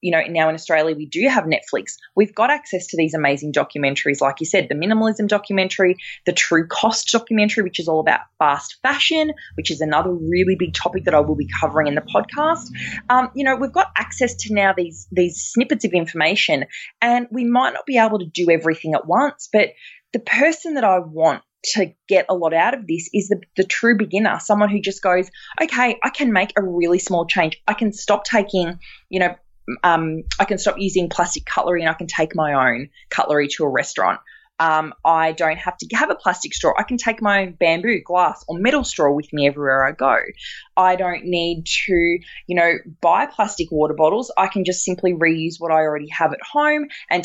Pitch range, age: 160-210 Hz, 20-39